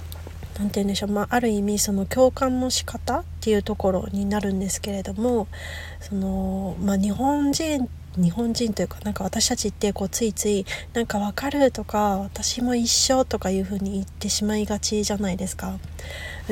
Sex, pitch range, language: female, 195-235 Hz, Japanese